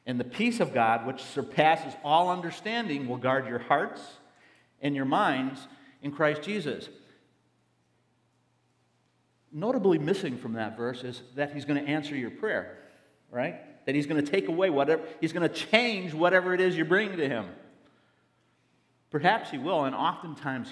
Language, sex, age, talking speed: English, male, 50-69, 160 wpm